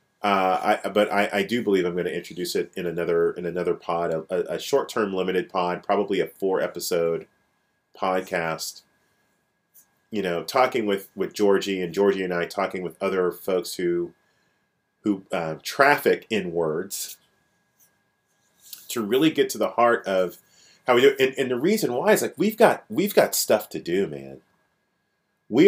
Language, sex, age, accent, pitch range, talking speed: English, male, 30-49, American, 95-130 Hz, 170 wpm